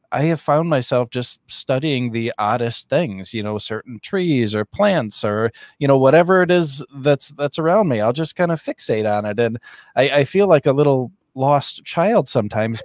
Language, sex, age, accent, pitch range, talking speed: English, male, 20-39, American, 110-145 Hz, 195 wpm